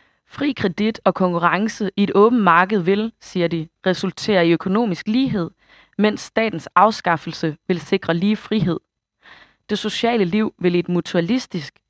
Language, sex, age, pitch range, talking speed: Danish, female, 20-39, 165-210 Hz, 145 wpm